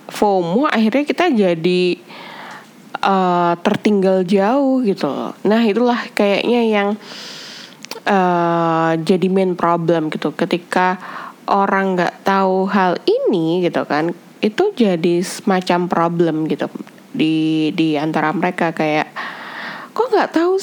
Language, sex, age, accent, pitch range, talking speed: Indonesian, female, 10-29, native, 175-260 Hz, 110 wpm